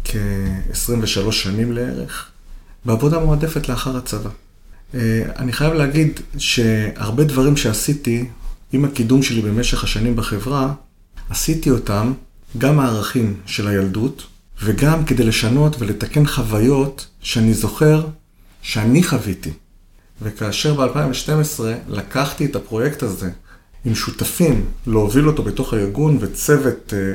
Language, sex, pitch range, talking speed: Hebrew, male, 105-140 Hz, 105 wpm